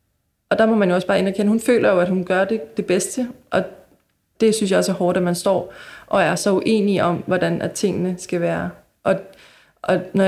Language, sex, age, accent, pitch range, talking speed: Danish, female, 20-39, native, 175-200 Hz, 235 wpm